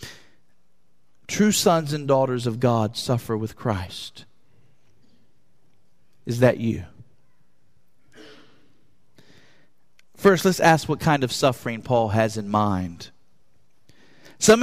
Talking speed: 100 wpm